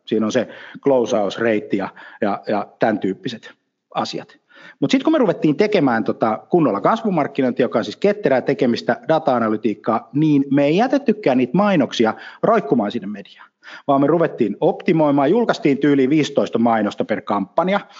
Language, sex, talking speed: Finnish, male, 150 wpm